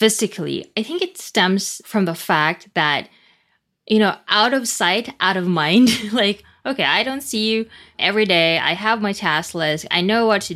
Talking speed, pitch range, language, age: 195 wpm, 165-215 Hz, English, 20-39